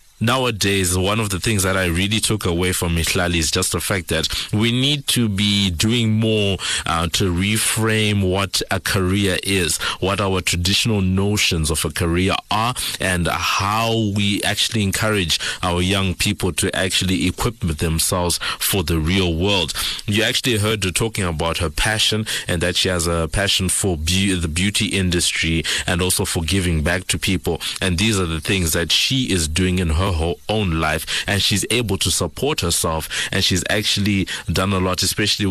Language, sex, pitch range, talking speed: English, male, 85-105 Hz, 180 wpm